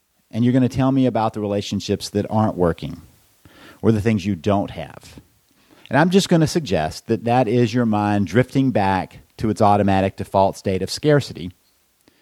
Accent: American